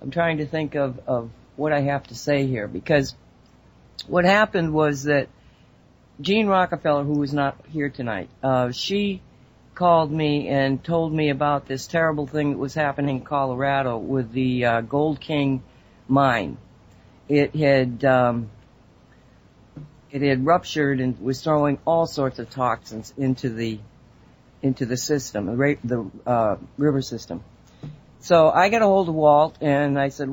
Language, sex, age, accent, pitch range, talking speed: English, female, 60-79, American, 130-155 Hz, 155 wpm